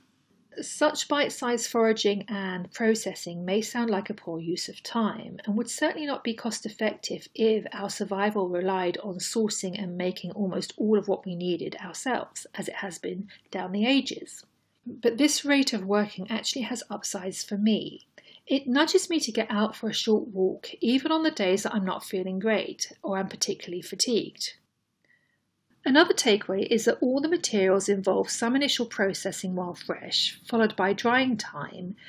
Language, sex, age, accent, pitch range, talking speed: English, female, 40-59, British, 195-245 Hz, 170 wpm